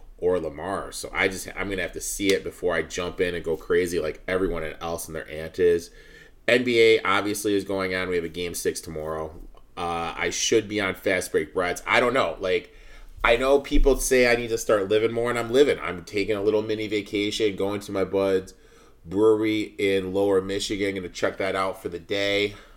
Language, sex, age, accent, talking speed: English, male, 30-49, American, 215 wpm